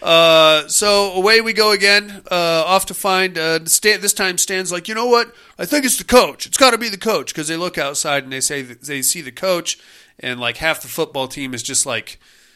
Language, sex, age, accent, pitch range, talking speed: English, male, 30-49, American, 145-230 Hz, 235 wpm